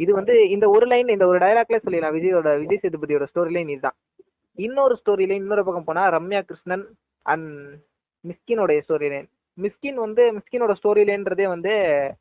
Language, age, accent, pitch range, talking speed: Tamil, 20-39, native, 155-210 Hz, 140 wpm